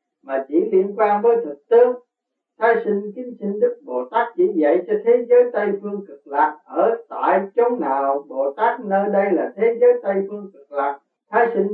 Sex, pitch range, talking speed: male, 160-240 Hz, 205 wpm